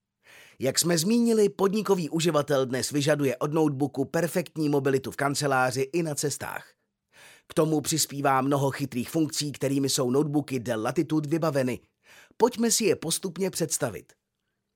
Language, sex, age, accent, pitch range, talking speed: Czech, male, 30-49, native, 135-170 Hz, 135 wpm